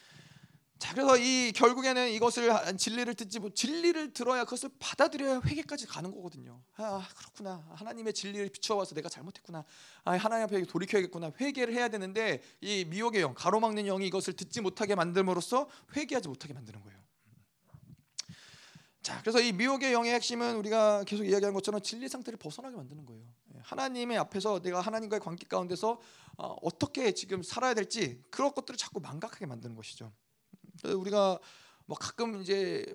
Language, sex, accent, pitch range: Korean, male, native, 145-235 Hz